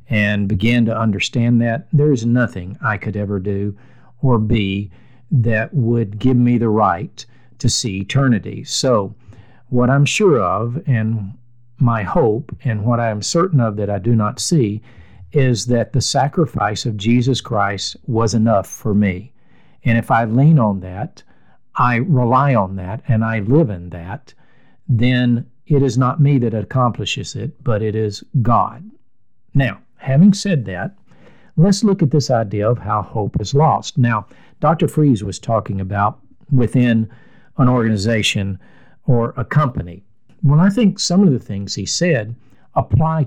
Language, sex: English, male